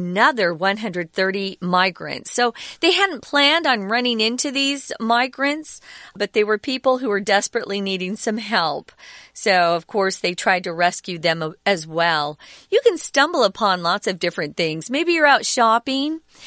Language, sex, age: Chinese, female, 40-59